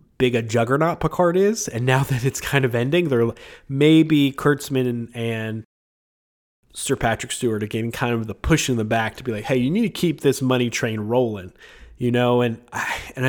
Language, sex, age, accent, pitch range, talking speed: English, male, 20-39, American, 115-130 Hz, 210 wpm